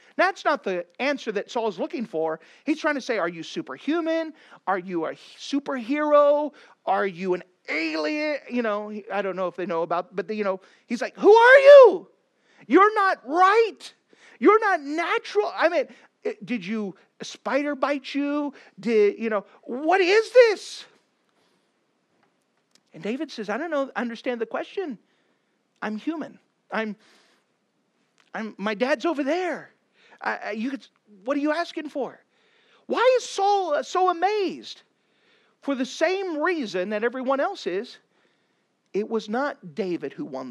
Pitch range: 200-320 Hz